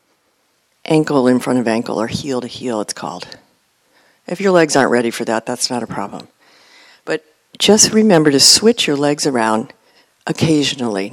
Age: 60-79